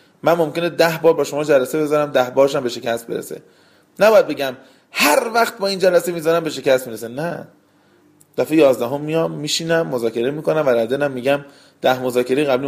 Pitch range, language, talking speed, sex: 125-160 Hz, Persian, 175 wpm, male